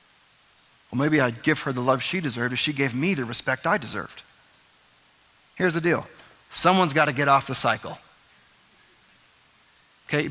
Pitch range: 135-165 Hz